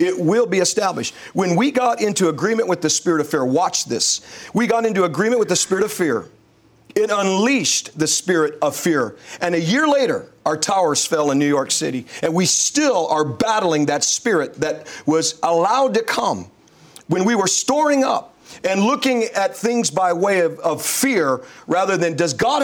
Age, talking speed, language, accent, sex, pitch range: 40-59, 190 wpm, English, American, male, 160-225 Hz